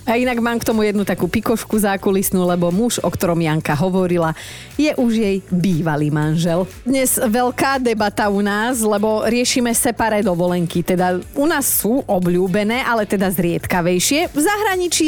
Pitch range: 185-240 Hz